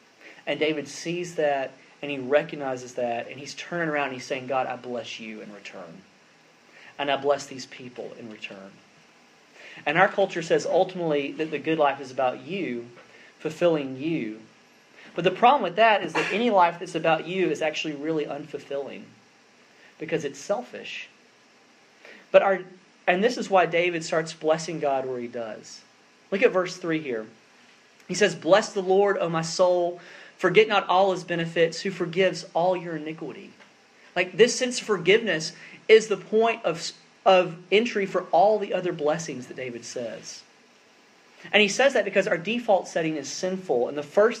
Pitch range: 150-195 Hz